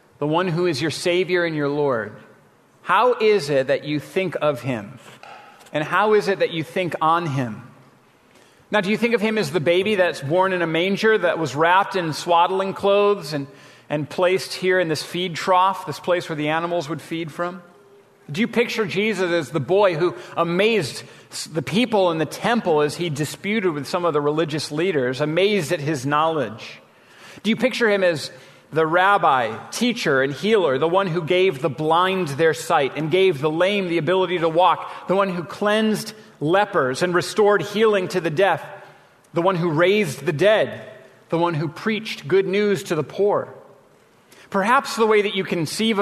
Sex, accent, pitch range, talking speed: male, American, 150-195 Hz, 190 wpm